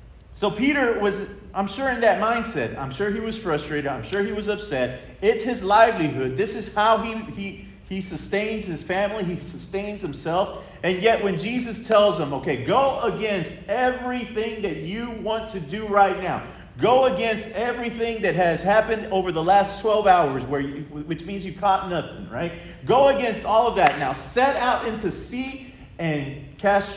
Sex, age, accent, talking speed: male, 40-59, American, 180 wpm